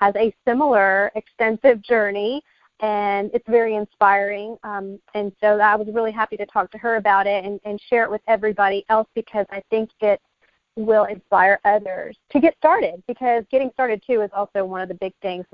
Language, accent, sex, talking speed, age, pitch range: English, American, female, 195 wpm, 40-59, 205-260 Hz